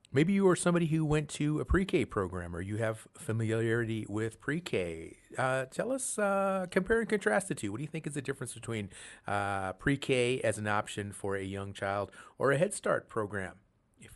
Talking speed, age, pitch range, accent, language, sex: 200 wpm, 40-59, 100-135 Hz, American, English, male